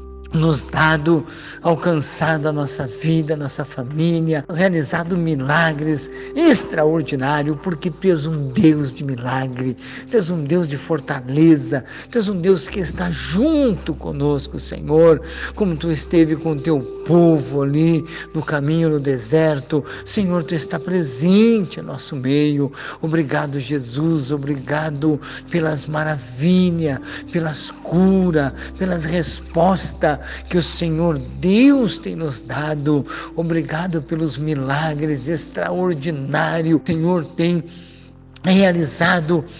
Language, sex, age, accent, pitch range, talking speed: Portuguese, male, 60-79, Brazilian, 150-175 Hz, 115 wpm